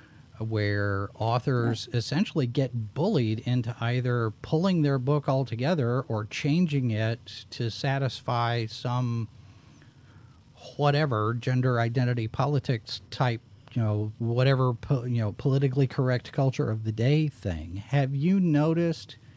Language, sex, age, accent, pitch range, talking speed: English, male, 40-59, American, 120-150 Hz, 115 wpm